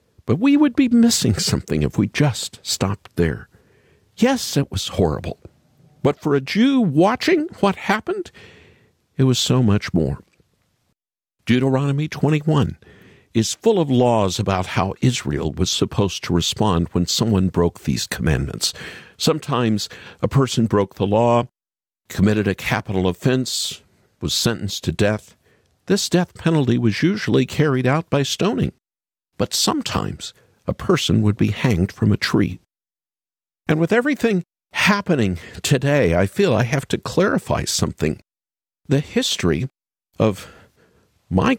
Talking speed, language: 135 wpm, English